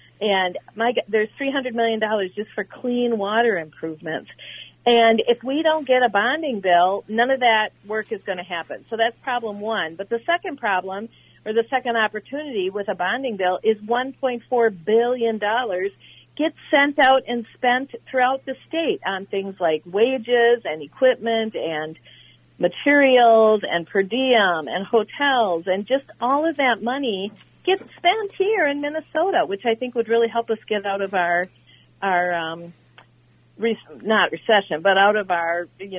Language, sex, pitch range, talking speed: English, female, 185-240 Hz, 160 wpm